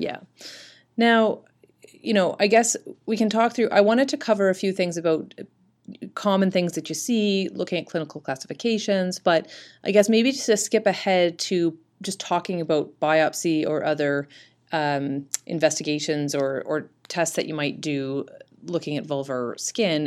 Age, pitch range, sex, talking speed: 30-49, 145-195 Hz, female, 160 wpm